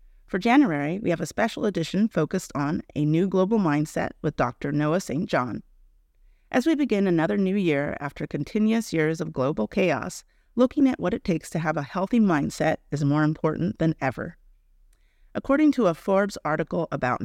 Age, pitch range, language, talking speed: 30-49, 145-195 Hz, English, 175 wpm